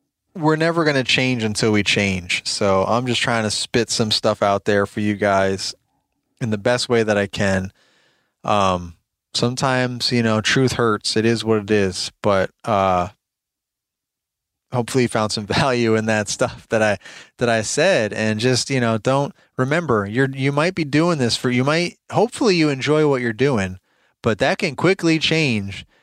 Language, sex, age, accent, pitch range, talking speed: English, male, 30-49, American, 100-125 Hz, 185 wpm